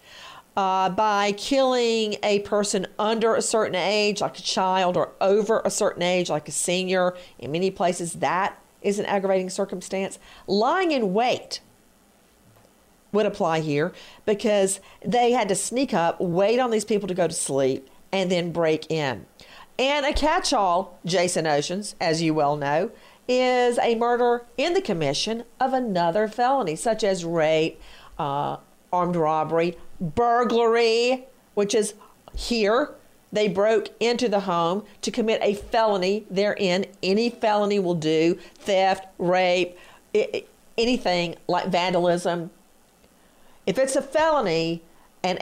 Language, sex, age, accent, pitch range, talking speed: English, female, 40-59, American, 175-235 Hz, 140 wpm